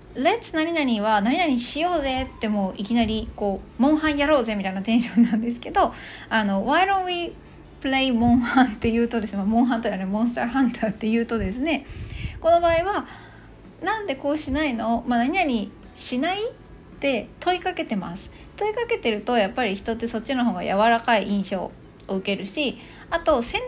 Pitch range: 220-295 Hz